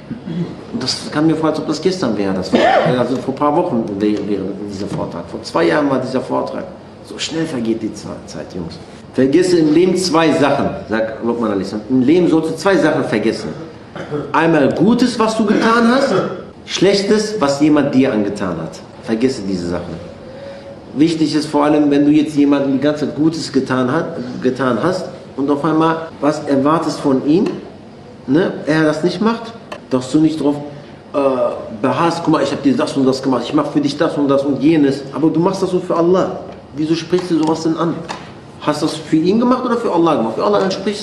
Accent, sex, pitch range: German, male, 135-185 Hz